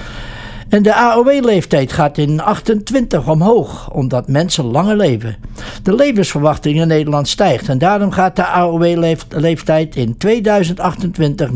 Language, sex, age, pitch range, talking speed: English, male, 60-79, 135-195 Hz, 120 wpm